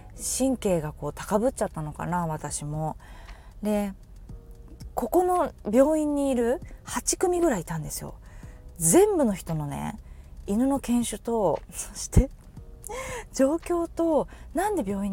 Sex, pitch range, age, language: female, 165-275 Hz, 20-39, Japanese